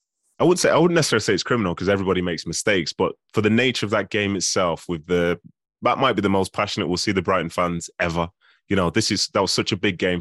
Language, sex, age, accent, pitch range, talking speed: English, male, 20-39, British, 90-100 Hz, 265 wpm